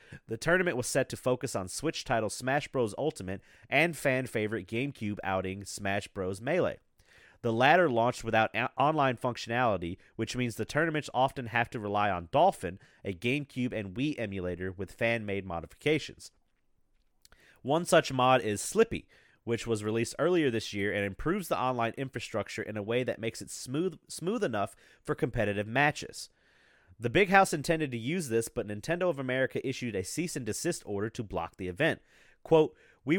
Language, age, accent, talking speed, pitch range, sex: English, 30-49, American, 170 wpm, 105-135 Hz, male